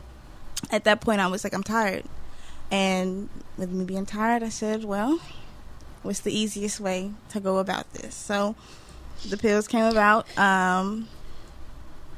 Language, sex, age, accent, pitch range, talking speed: English, female, 10-29, American, 190-215 Hz, 150 wpm